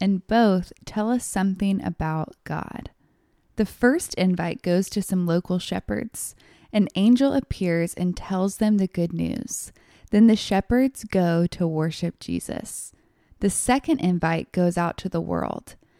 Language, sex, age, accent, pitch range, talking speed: English, female, 20-39, American, 175-220 Hz, 145 wpm